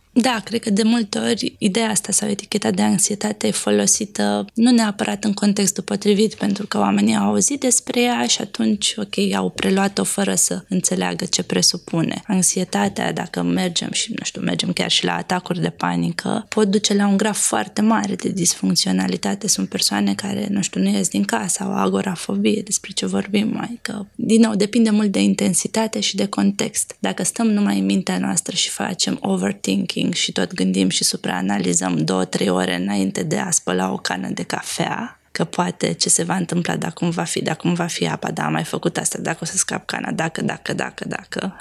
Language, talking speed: Romanian, 200 wpm